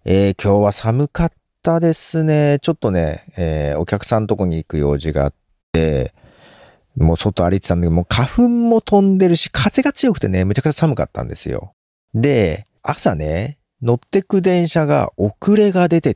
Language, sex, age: Japanese, male, 40-59